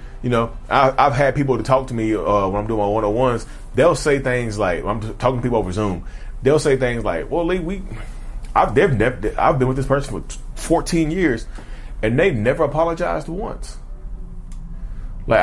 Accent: American